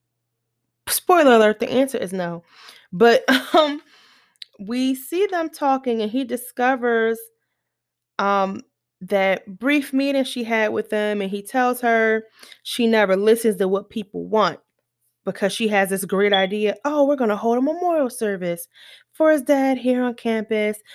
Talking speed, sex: 155 wpm, female